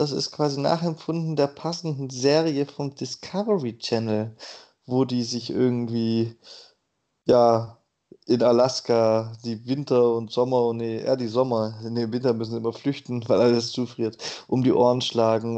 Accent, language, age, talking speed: German, German, 20-39, 145 wpm